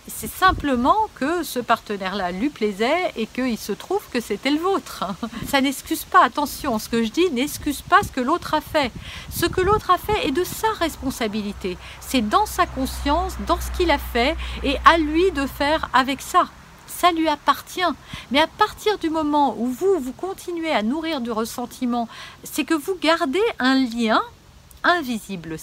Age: 60-79